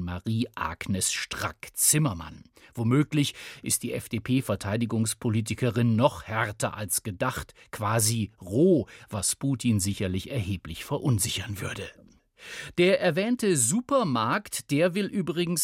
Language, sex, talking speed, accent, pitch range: German, male, 90 wpm, German, 105-145 Hz